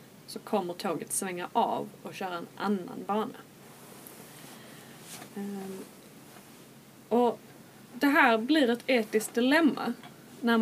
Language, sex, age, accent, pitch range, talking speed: Swedish, female, 20-39, native, 200-245 Hz, 100 wpm